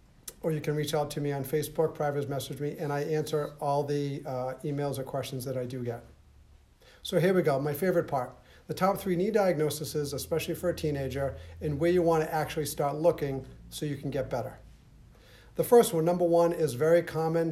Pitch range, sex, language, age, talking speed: 140-165 Hz, male, English, 50-69, 210 wpm